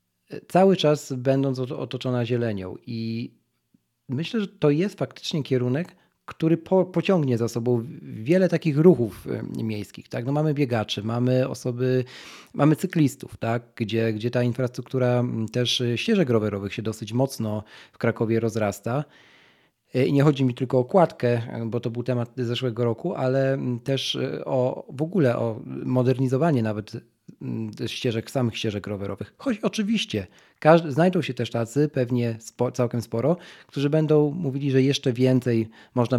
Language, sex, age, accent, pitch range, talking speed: Polish, male, 40-59, native, 115-155 Hz, 140 wpm